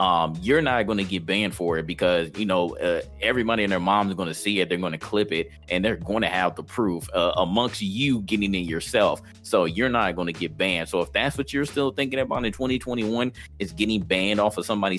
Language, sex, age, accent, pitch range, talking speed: English, male, 30-49, American, 90-110 Hz, 250 wpm